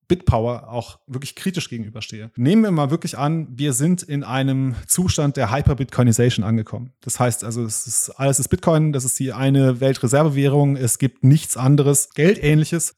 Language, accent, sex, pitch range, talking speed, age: German, German, male, 120-145 Hz, 165 wpm, 30-49